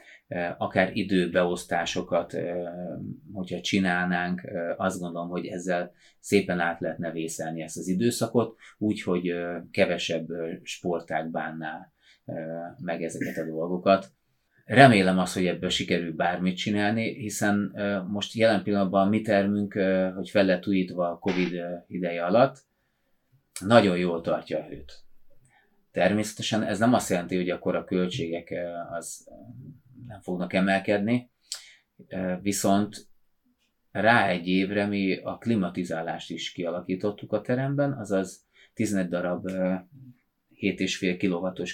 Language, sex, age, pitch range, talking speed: Hungarian, male, 30-49, 85-100 Hz, 110 wpm